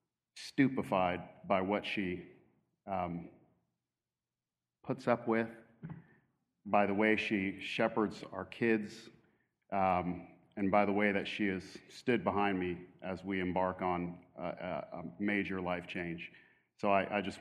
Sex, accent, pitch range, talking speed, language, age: male, American, 95-110 Hz, 135 wpm, English, 40-59